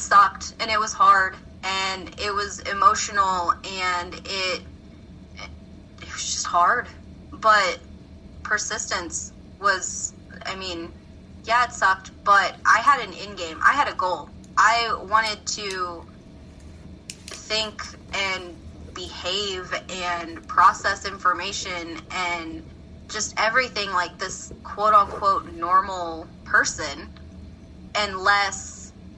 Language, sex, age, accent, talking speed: English, female, 20-39, American, 105 wpm